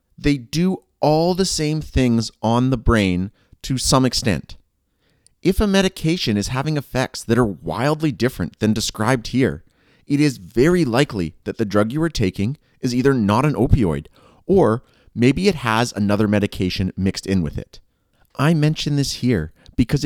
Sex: male